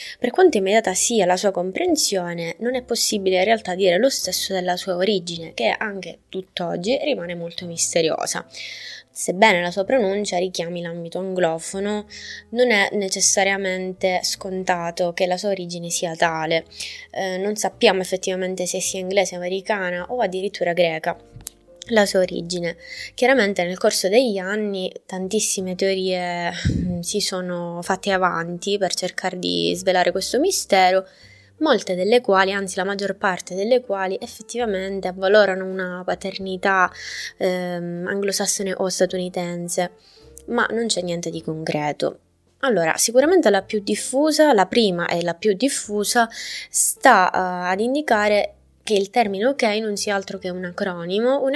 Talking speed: 140 wpm